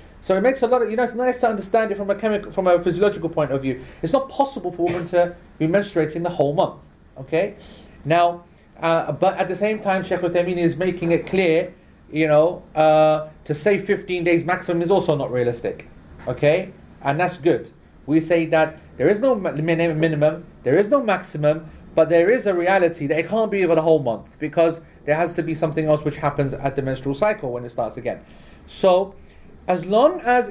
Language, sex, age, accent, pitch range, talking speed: English, male, 30-49, British, 145-190 Hz, 210 wpm